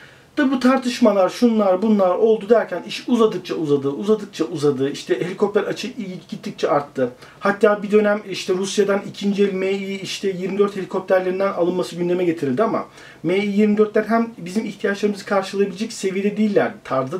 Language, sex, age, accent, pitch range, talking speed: Turkish, male, 40-59, native, 180-235 Hz, 140 wpm